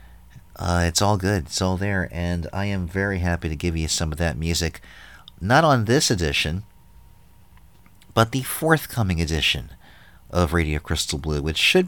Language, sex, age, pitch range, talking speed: English, male, 40-59, 85-105 Hz, 165 wpm